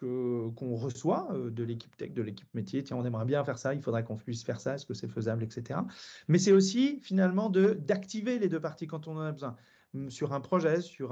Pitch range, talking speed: 140-190 Hz, 235 wpm